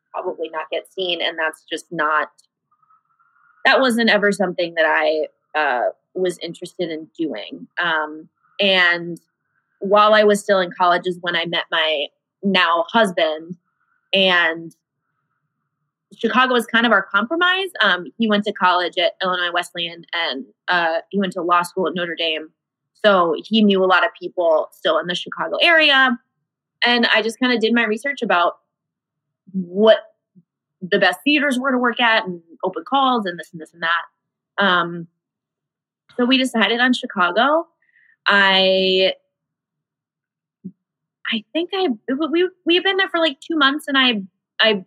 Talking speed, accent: 160 wpm, American